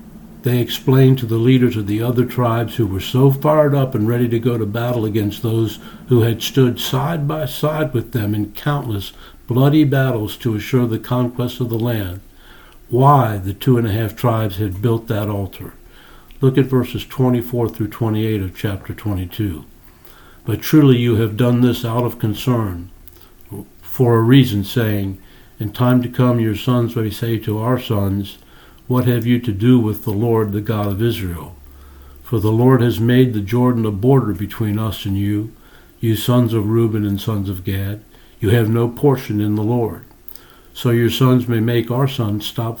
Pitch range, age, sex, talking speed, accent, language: 105-125 Hz, 60-79, male, 185 wpm, American, English